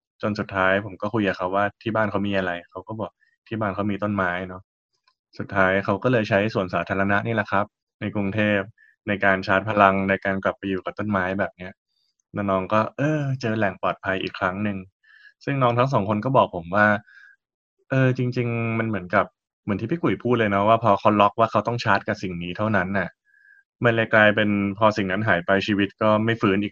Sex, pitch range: male, 95-115 Hz